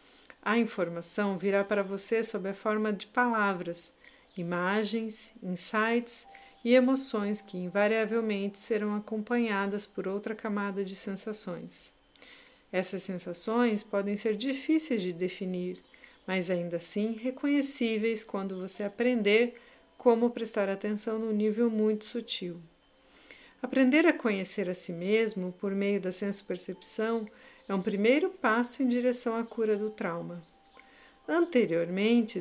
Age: 50-69